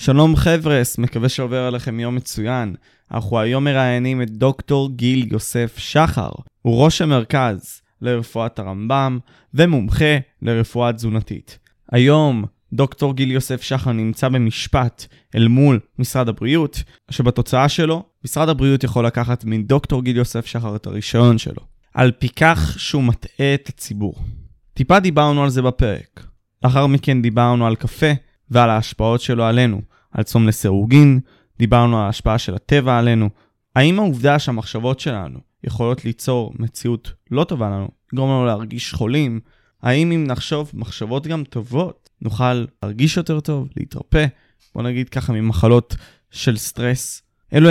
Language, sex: Hebrew, male